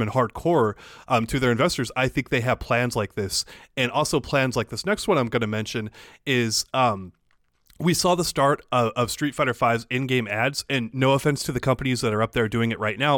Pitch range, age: 115-140 Hz, 30-49